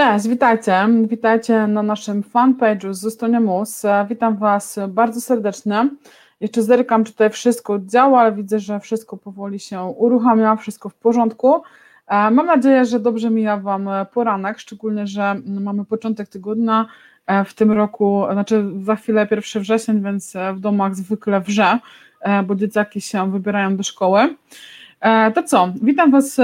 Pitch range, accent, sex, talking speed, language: 205-235 Hz, native, female, 145 wpm, Polish